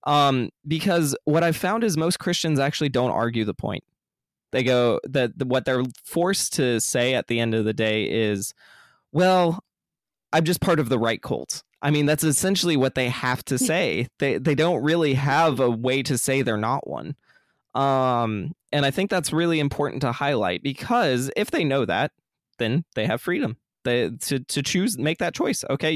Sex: male